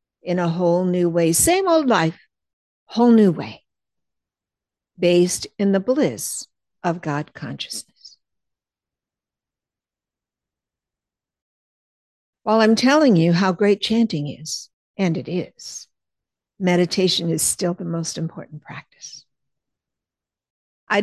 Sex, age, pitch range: female, 60-79, 165-205 Hz